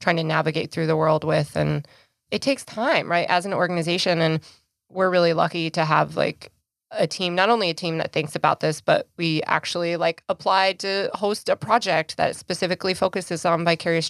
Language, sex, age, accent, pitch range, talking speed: English, female, 20-39, American, 160-195 Hz, 195 wpm